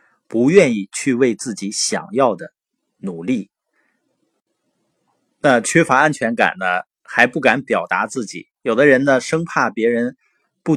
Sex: male